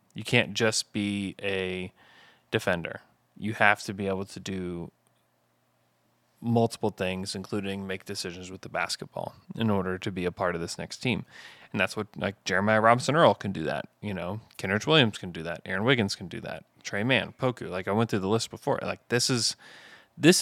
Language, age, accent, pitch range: English, 20-39, American, 95-120 Hz